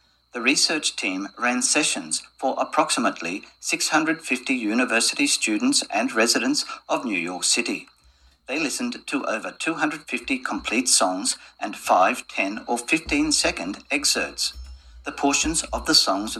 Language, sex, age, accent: Japanese, male, 50-69, Australian